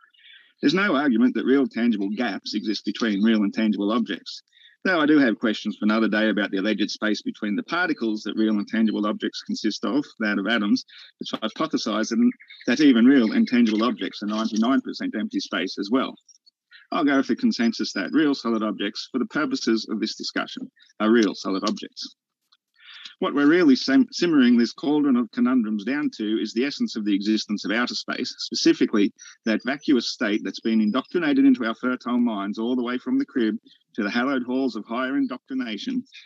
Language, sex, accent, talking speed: English, male, Australian, 190 wpm